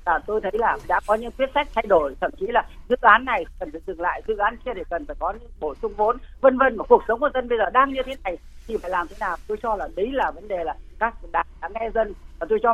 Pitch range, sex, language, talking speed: 205-285 Hz, female, Vietnamese, 310 wpm